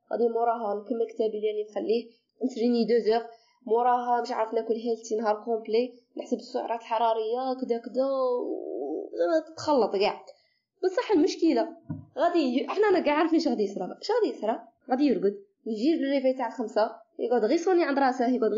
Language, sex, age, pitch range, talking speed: Arabic, female, 20-39, 225-310 Hz, 155 wpm